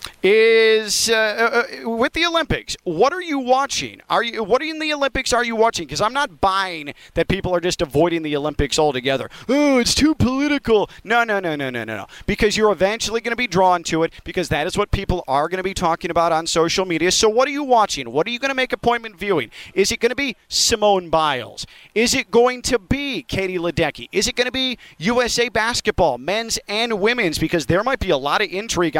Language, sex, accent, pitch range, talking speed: English, male, American, 155-230 Hz, 230 wpm